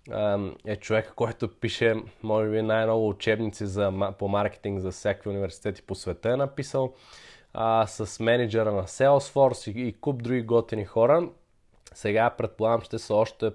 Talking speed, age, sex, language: 150 wpm, 20-39, male, Bulgarian